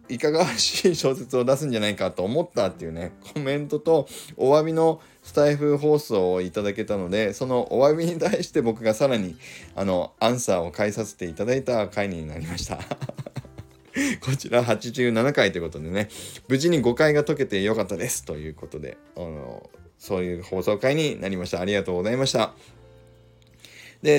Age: 20-39